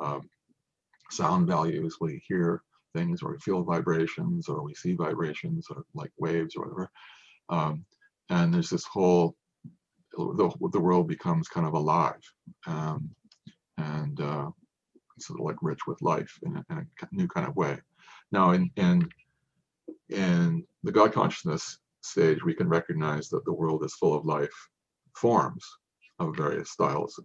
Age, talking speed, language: 40-59, 150 wpm, English